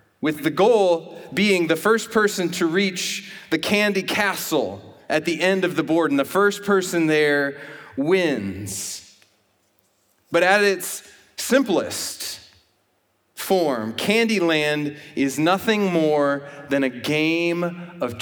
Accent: American